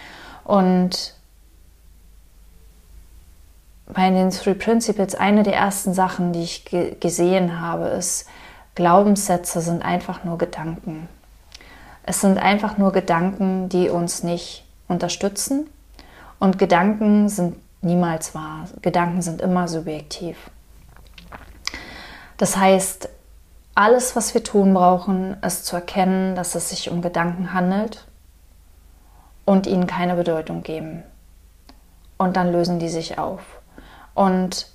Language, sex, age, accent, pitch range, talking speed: German, female, 30-49, German, 170-190 Hz, 110 wpm